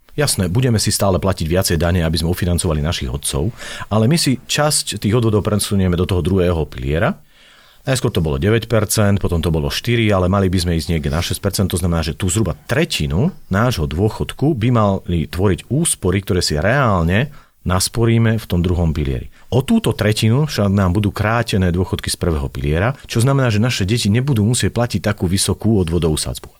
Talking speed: 185 wpm